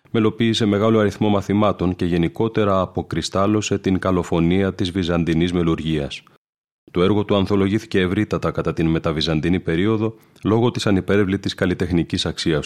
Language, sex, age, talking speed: Greek, male, 30-49, 125 wpm